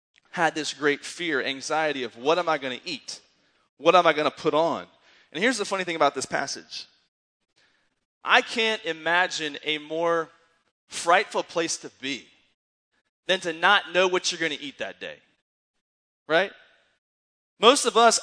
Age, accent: 20-39, American